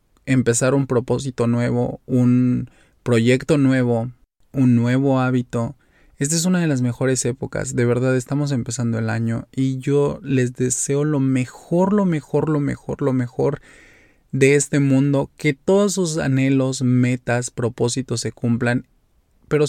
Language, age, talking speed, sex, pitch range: Spanish, 20-39, 145 wpm, male, 120-140 Hz